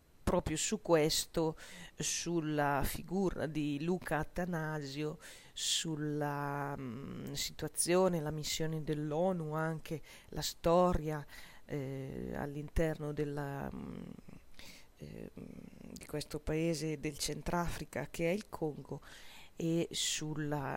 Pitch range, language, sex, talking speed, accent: 145-170 Hz, Italian, female, 95 wpm, native